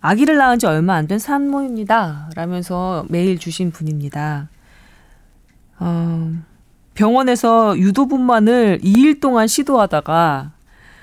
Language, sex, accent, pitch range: Korean, female, native, 160-235 Hz